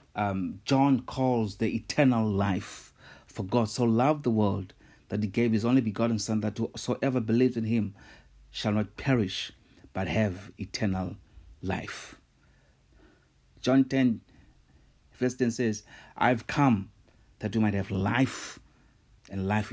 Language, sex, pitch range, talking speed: English, male, 95-120 Hz, 135 wpm